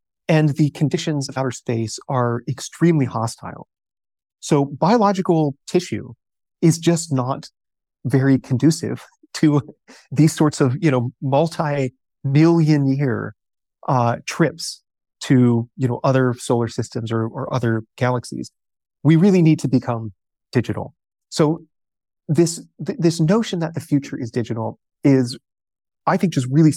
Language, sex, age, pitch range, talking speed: English, male, 30-49, 125-165 Hz, 130 wpm